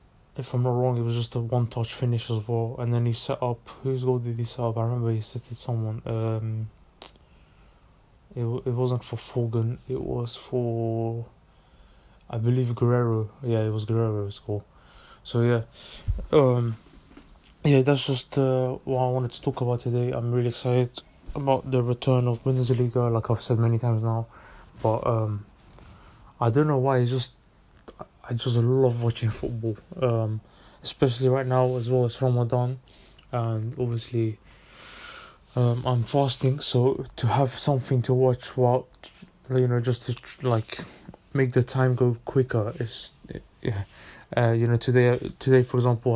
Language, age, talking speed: English, 20-39, 165 wpm